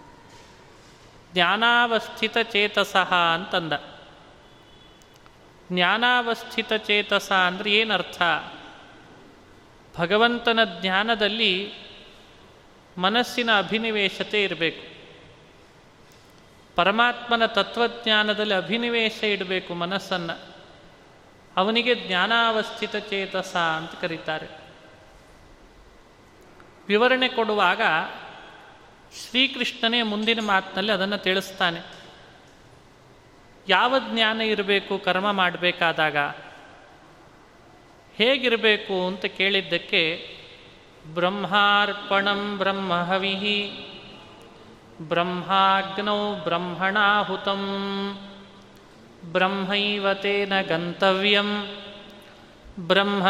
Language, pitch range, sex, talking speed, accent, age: Kannada, 185-210 Hz, male, 50 wpm, native, 30-49